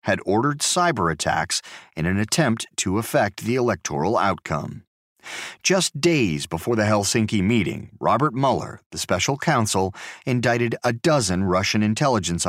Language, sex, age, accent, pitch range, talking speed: English, male, 40-59, American, 90-130 Hz, 135 wpm